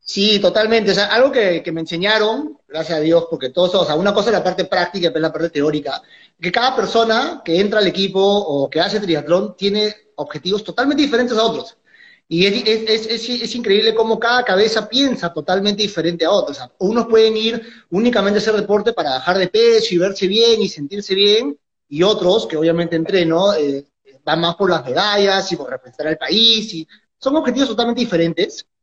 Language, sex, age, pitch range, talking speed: Spanish, male, 30-49, 165-225 Hz, 205 wpm